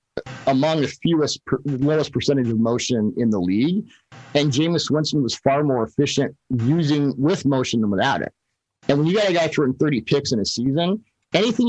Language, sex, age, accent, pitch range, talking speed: English, male, 50-69, American, 120-155 Hz, 195 wpm